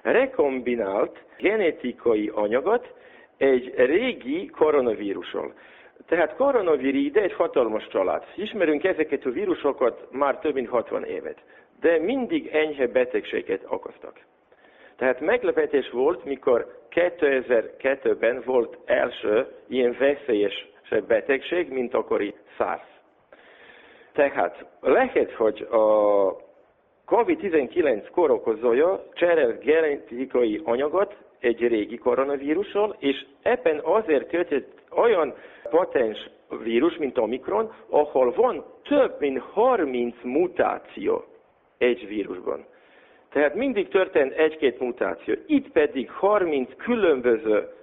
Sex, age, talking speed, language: male, 50-69, 95 wpm, Hungarian